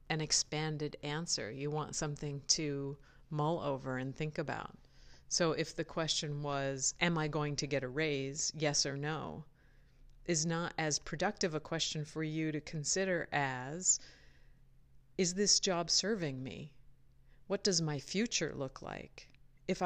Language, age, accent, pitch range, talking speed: English, 50-69, American, 135-165 Hz, 150 wpm